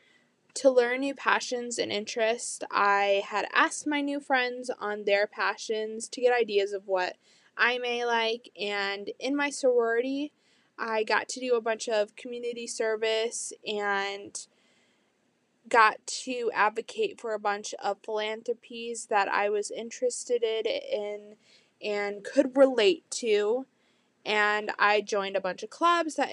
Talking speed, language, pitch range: 140 wpm, English, 205-255 Hz